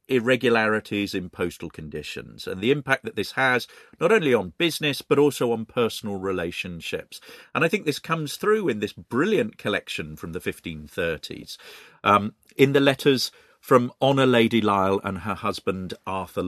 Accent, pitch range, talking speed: British, 90-135 Hz, 160 wpm